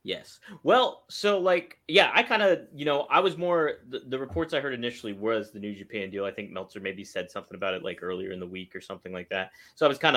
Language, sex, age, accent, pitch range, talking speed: English, male, 20-39, American, 95-140 Hz, 265 wpm